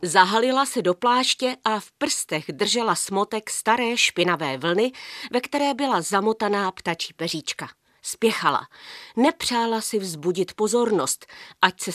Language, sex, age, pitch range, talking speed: Czech, female, 40-59, 175-235 Hz, 125 wpm